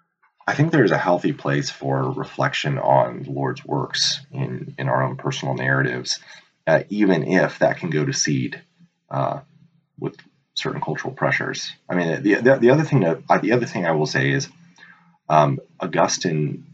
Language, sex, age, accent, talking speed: English, male, 30-49, American, 180 wpm